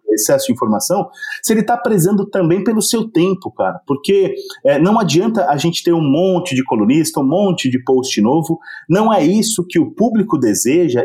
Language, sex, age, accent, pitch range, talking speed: Portuguese, male, 40-59, Brazilian, 155-230 Hz, 190 wpm